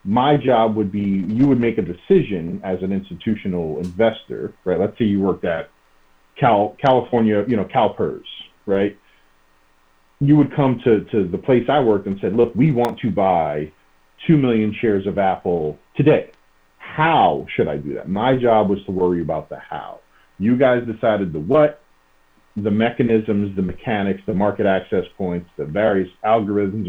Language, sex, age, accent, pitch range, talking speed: English, male, 40-59, American, 90-115 Hz, 170 wpm